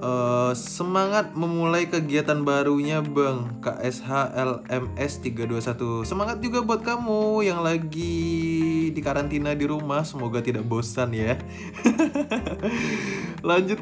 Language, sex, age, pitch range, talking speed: Indonesian, male, 20-39, 120-155 Hz, 90 wpm